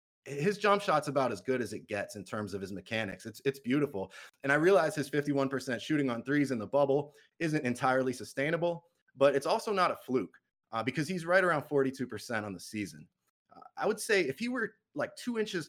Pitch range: 120-165 Hz